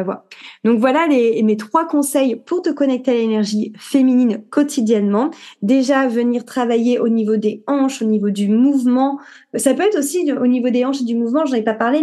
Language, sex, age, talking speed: French, female, 20-39, 200 wpm